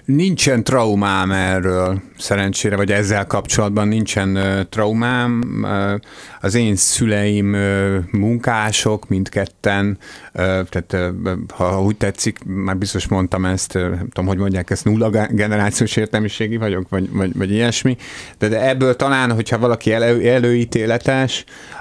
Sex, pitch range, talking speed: male, 95-115 Hz, 120 wpm